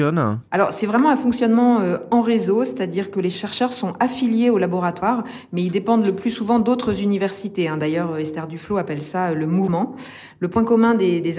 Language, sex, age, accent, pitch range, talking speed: French, female, 50-69, French, 160-205 Hz, 200 wpm